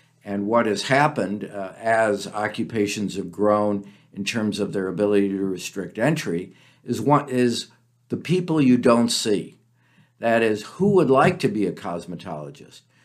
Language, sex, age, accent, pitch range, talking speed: English, male, 50-69, American, 105-140 Hz, 155 wpm